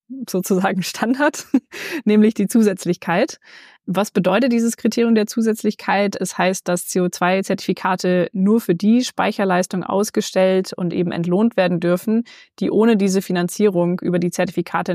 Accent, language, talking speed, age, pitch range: German, German, 130 wpm, 20-39, 175-210 Hz